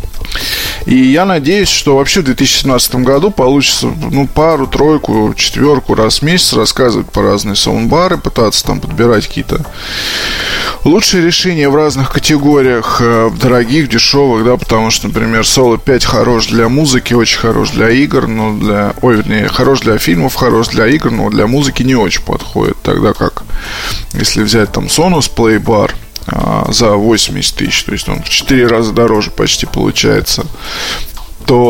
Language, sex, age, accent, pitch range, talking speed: Russian, male, 20-39, native, 110-140 Hz, 150 wpm